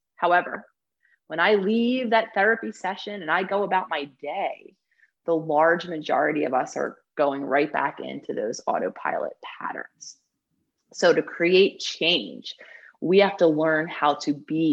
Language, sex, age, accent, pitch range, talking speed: English, female, 30-49, American, 160-215 Hz, 150 wpm